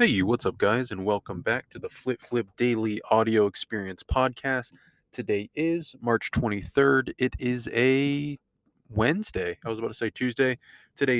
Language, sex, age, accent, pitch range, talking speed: English, male, 20-39, American, 105-125 Hz, 160 wpm